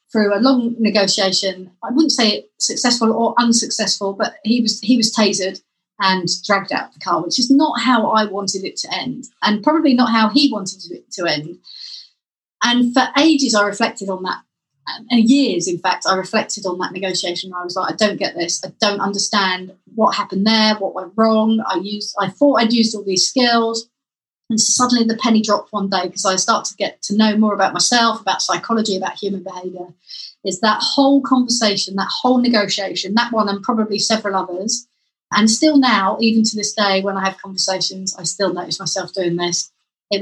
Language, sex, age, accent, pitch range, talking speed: English, female, 30-49, British, 190-230 Hz, 205 wpm